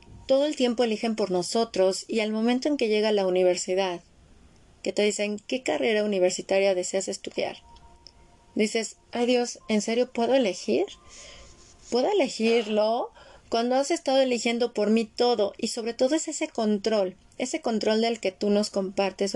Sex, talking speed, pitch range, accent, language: female, 160 wpm, 200-245 Hz, Mexican, Spanish